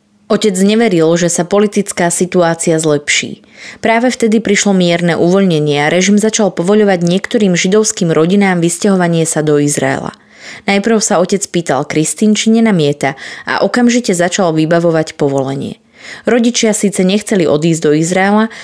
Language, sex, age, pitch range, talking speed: Slovak, female, 20-39, 165-210 Hz, 130 wpm